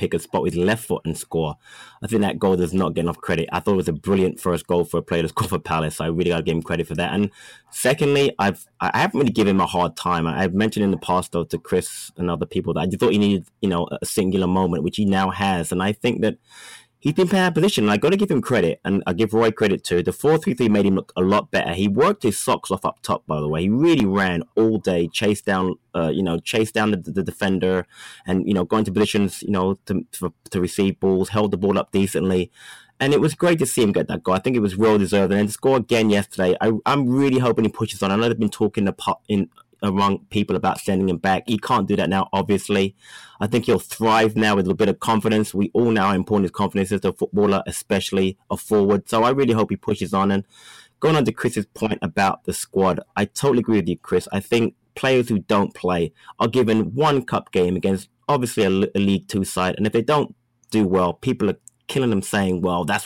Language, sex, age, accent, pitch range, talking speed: English, male, 20-39, British, 95-110 Hz, 260 wpm